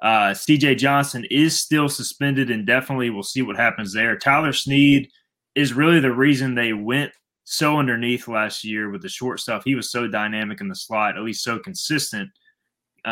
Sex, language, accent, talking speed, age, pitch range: male, English, American, 190 wpm, 20-39, 110-130 Hz